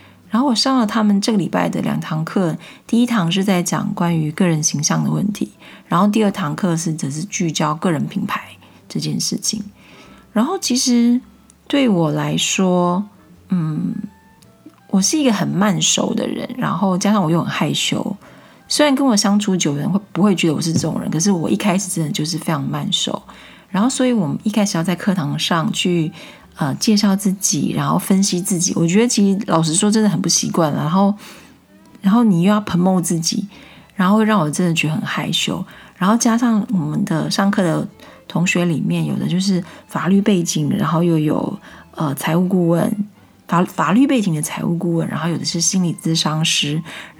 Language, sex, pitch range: Chinese, female, 165-210 Hz